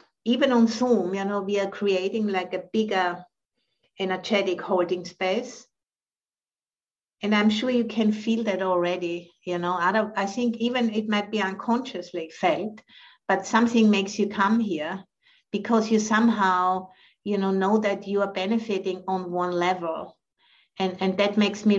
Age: 50-69